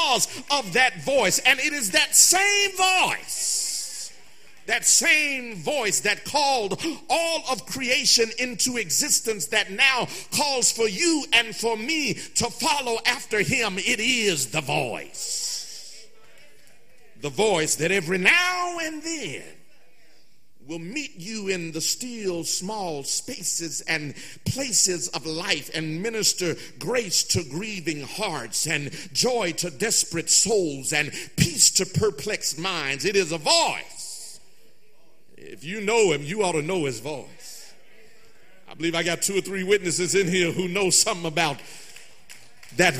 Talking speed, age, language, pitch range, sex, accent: 140 wpm, 50-69, English, 165-250 Hz, male, American